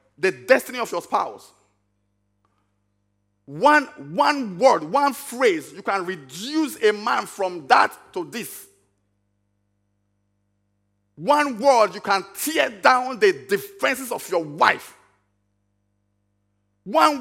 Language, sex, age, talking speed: English, male, 50-69, 110 wpm